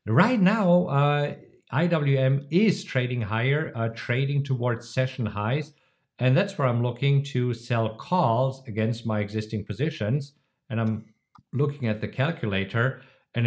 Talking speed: 140 wpm